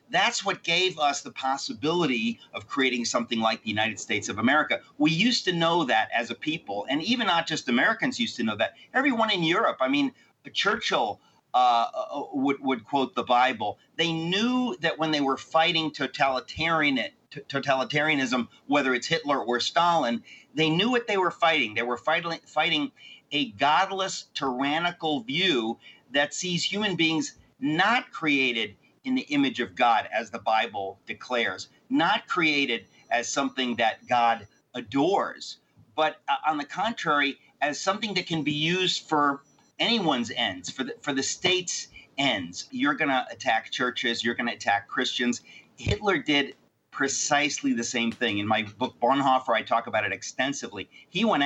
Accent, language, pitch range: American, English, 130-185 Hz